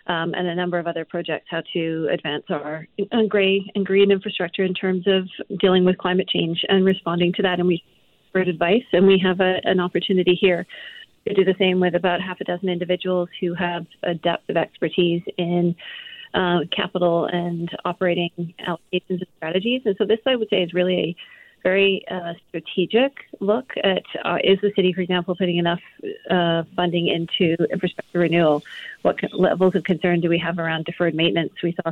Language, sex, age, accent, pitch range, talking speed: English, female, 30-49, American, 170-195 Hz, 190 wpm